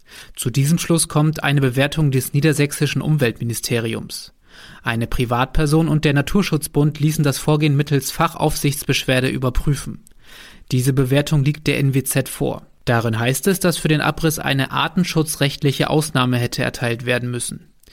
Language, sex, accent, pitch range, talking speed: German, male, German, 130-150 Hz, 135 wpm